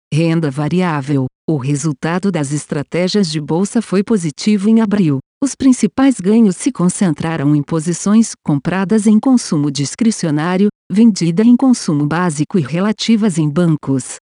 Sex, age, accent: female, 50-69, Brazilian